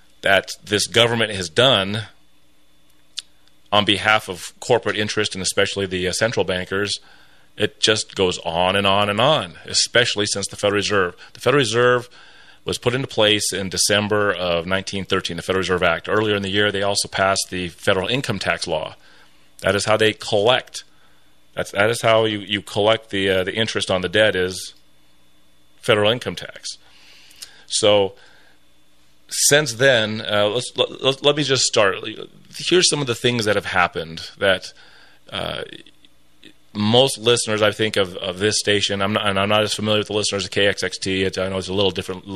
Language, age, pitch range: English, 30-49, 95-110 Hz